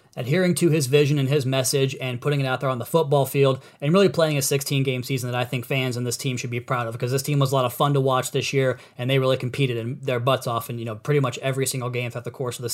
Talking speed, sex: 300 wpm, male